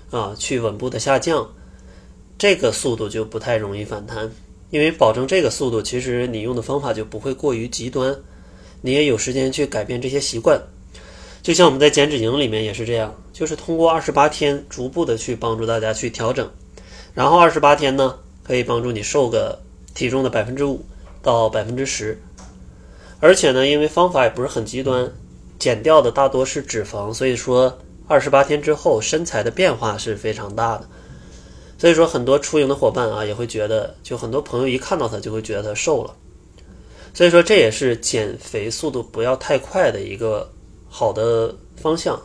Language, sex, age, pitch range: Chinese, male, 20-39, 110-140 Hz